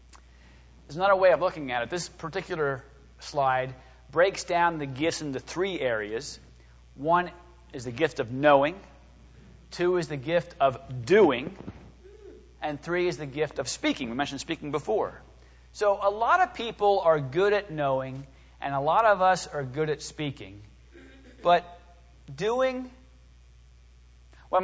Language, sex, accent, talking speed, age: English, male, American, 150 wpm, 40-59